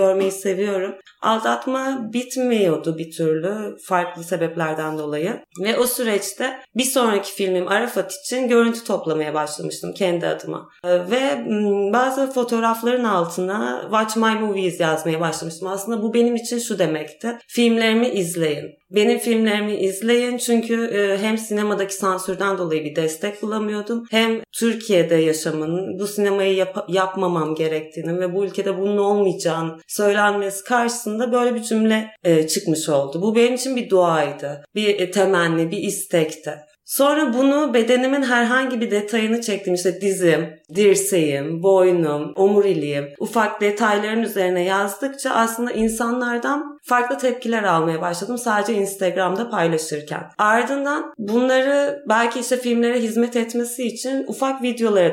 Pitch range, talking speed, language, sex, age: 170-230 Hz, 125 wpm, Turkish, female, 30-49